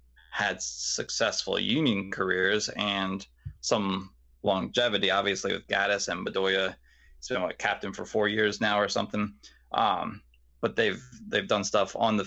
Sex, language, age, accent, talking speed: male, English, 20-39, American, 145 wpm